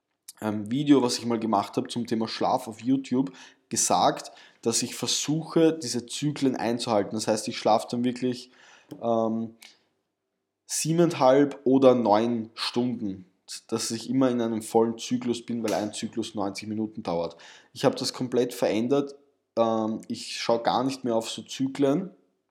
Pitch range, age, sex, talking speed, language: 110-135 Hz, 20-39, male, 150 wpm, German